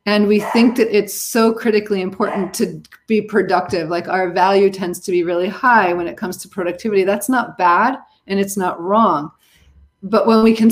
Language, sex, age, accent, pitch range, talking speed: English, female, 30-49, American, 180-215 Hz, 195 wpm